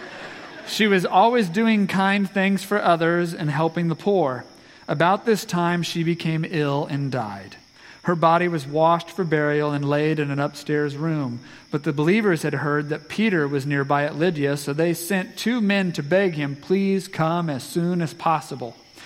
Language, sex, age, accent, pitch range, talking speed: English, male, 40-59, American, 140-185 Hz, 180 wpm